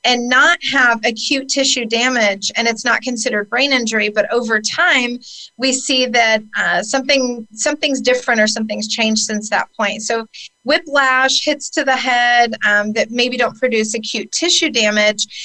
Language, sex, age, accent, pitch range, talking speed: English, female, 40-59, American, 215-255 Hz, 165 wpm